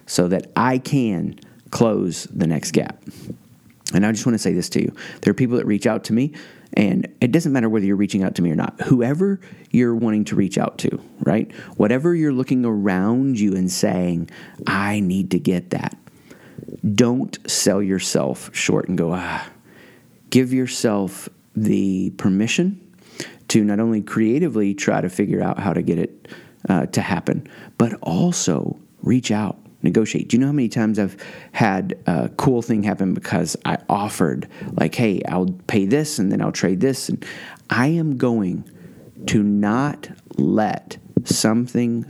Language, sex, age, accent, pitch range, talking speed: English, male, 30-49, American, 100-125 Hz, 170 wpm